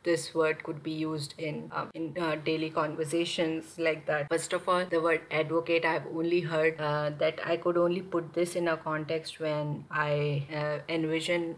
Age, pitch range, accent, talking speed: 30-49, 155-170 Hz, Indian, 185 wpm